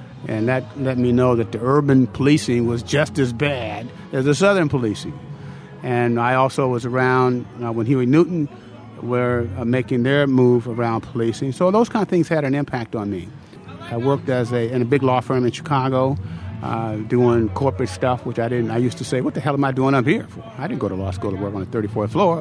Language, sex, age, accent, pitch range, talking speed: English, male, 50-69, American, 115-130 Hz, 230 wpm